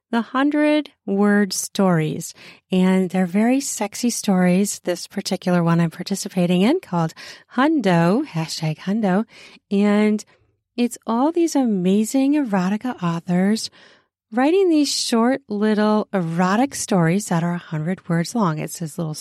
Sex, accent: female, American